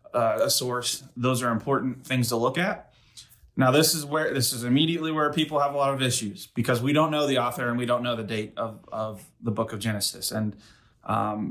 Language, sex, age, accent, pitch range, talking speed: English, male, 30-49, American, 115-130 Hz, 225 wpm